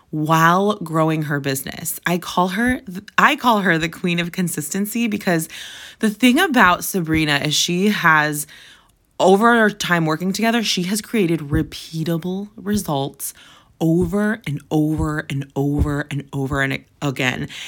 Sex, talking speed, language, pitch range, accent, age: female, 135 wpm, English, 160-205 Hz, American, 20-39